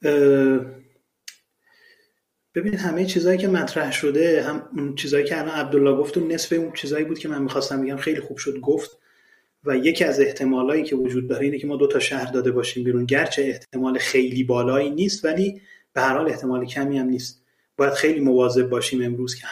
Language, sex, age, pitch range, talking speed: Persian, male, 30-49, 135-170 Hz, 185 wpm